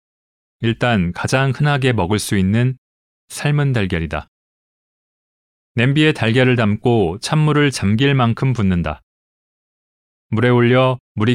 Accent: native